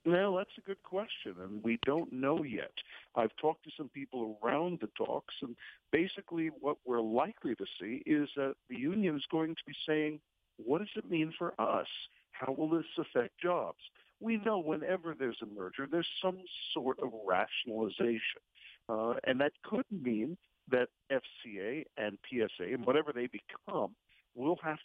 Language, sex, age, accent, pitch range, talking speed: English, male, 50-69, American, 115-165 Hz, 170 wpm